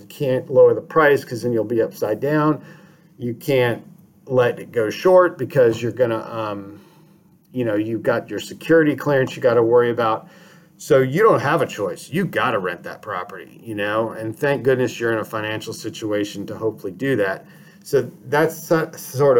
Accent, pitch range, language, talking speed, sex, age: American, 115-165 Hz, English, 190 wpm, male, 40-59